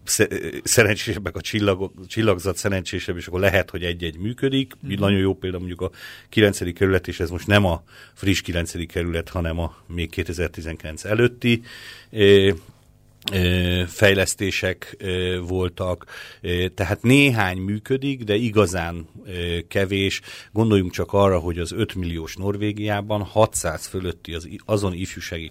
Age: 40-59